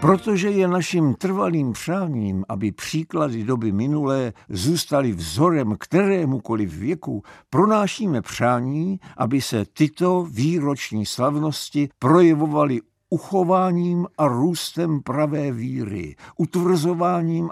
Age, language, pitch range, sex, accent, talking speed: 60-79, Czech, 125-165 Hz, male, native, 90 wpm